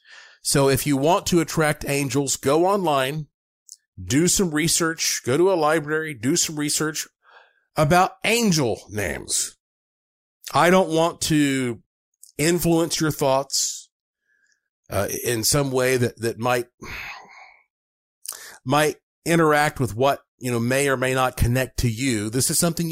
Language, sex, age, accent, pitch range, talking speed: English, male, 40-59, American, 130-170 Hz, 135 wpm